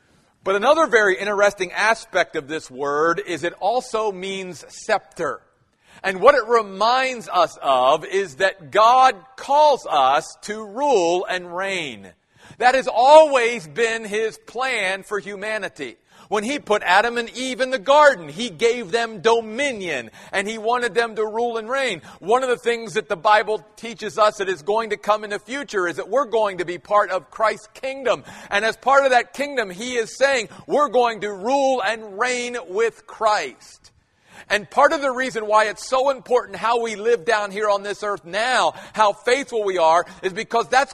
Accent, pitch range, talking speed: American, 200-250 Hz, 185 wpm